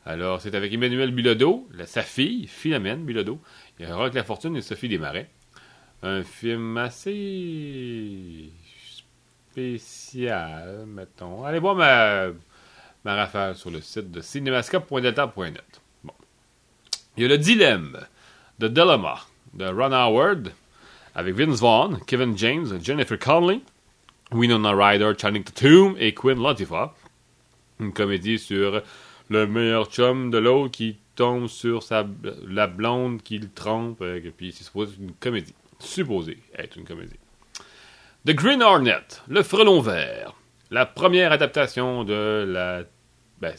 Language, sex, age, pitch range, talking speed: English, male, 30-49, 100-125 Hz, 140 wpm